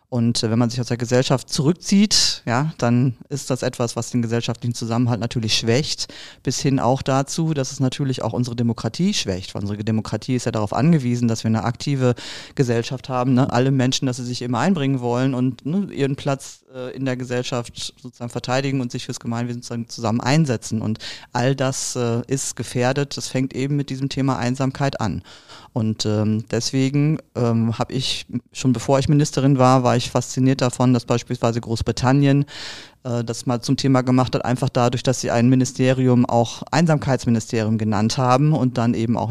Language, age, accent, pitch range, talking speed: German, 40-59, German, 115-135 Hz, 185 wpm